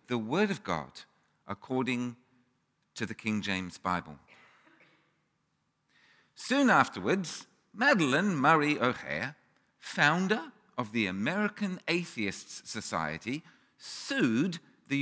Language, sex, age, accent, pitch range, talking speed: English, male, 50-69, British, 125-205 Hz, 90 wpm